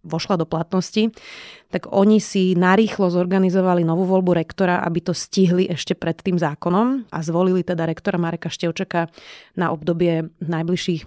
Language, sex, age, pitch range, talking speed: Slovak, female, 30-49, 170-195 Hz, 145 wpm